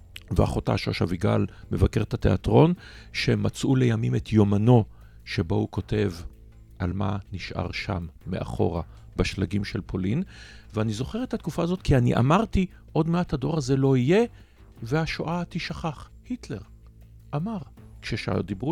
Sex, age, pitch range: male, 50-69, 100-140 Hz